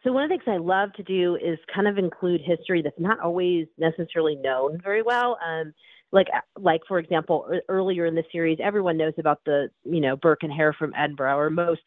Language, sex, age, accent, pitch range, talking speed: English, female, 30-49, American, 160-205 Hz, 220 wpm